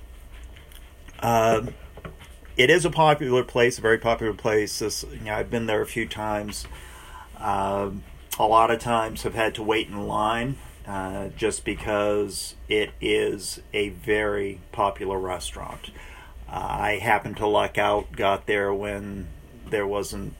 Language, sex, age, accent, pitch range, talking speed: English, male, 40-59, American, 80-110 Hz, 145 wpm